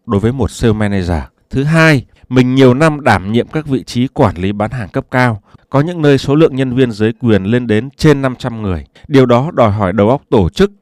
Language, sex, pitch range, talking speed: Vietnamese, male, 100-140 Hz, 240 wpm